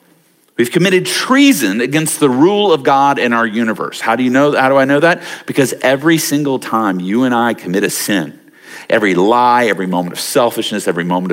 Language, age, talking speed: English, 50-69, 200 wpm